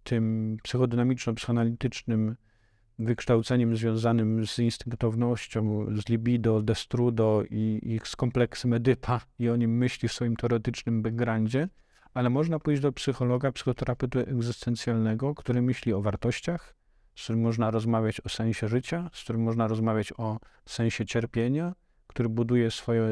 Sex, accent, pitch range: male, native, 110-130 Hz